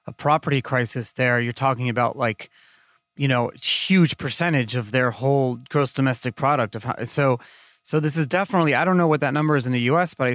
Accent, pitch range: American, 130-170 Hz